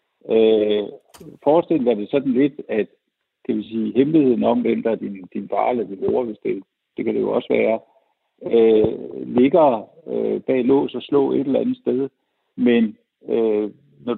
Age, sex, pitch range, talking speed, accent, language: 60-79, male, 115-190 Hz, 180 wpm, native, Danish